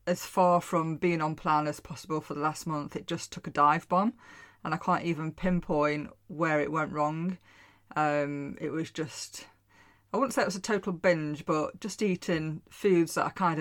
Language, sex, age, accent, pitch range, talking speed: English, female, 30-49, British, 155-185 Hz, 205 wpm